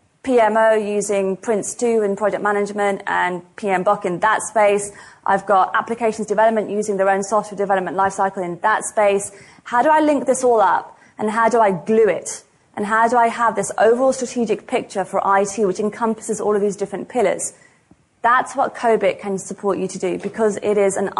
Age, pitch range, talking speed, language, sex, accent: 30-49, 195-225 Hz, 190 wpm, English, female, British